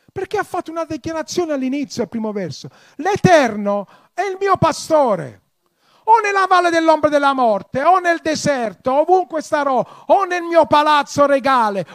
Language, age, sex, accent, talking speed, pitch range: Italian, 40-59, male, native, 150 wpm, 225-325 Hz